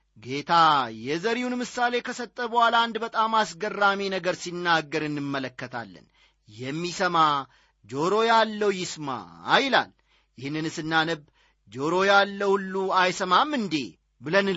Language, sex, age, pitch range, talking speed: Amharic, male, 40-59, 160-240 Hz, 100 wpm